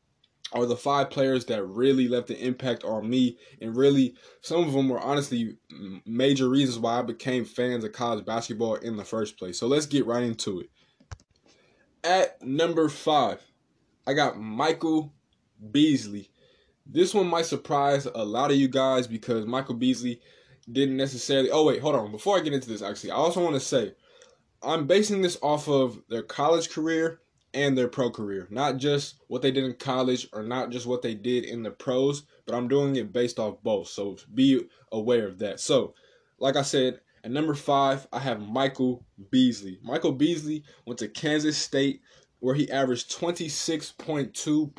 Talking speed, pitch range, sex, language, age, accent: 180 wpm, 120-150 Hz, male, English, 20-39, American